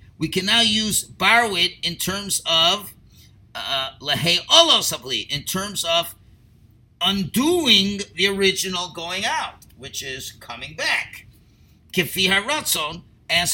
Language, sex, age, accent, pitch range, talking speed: English, male, 50-69, American, 150-215 Hz, 100 wpm